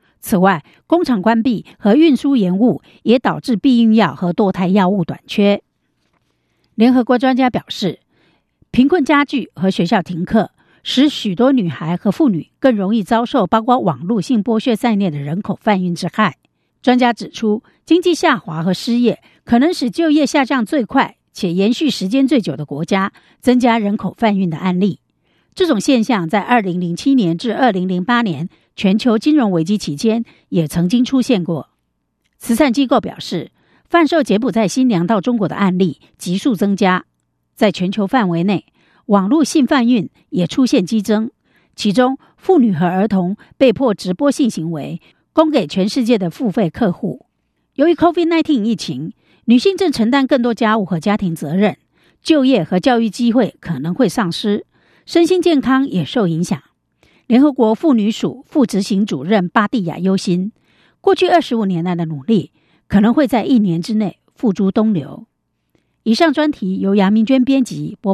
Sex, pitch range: female, 185-255 Hz